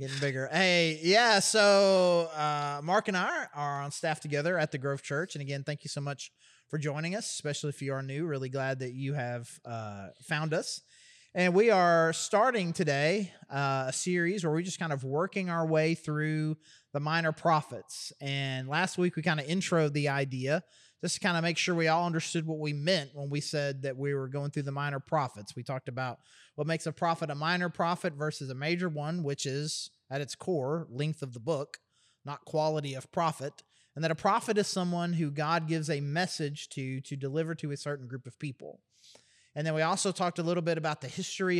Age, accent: 30-49, American